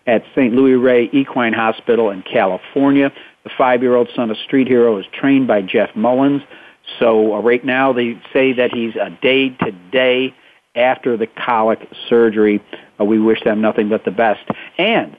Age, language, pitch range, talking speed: 50-69, English, 120-145 Hz, 165 wpm